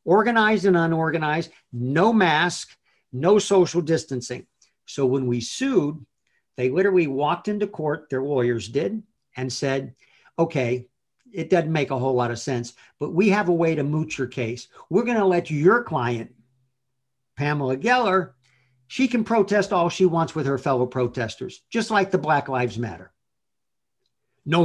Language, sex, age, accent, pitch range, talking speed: English, male, 50-69, American, 130-190 Hz, 155 wpm